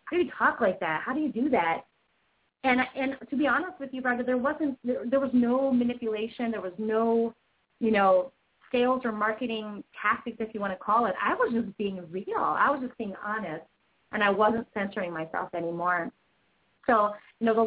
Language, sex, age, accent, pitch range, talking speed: English, female, 30-49, American, 190-235 Hz, 205 wpm